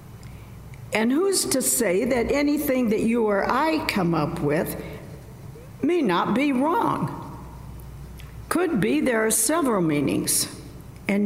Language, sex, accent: English, female, American